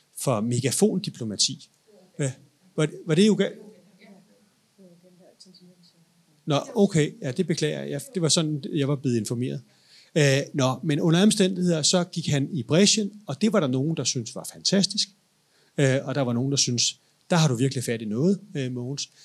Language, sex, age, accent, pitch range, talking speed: Danish, male, 30-49, native, 130-170 Hz, 180 wpm